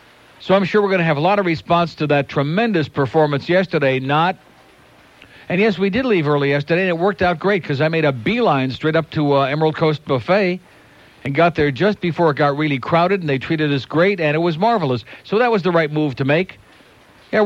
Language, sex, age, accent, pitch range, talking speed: English, male, 60-79, American, 140-195 Hz, 235 wpm